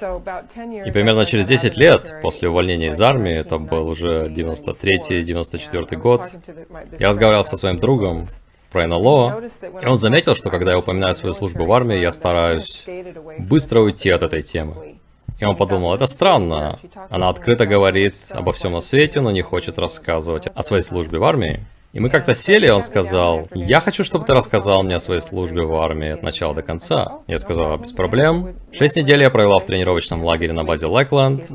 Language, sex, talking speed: Russian, male, 185 wpm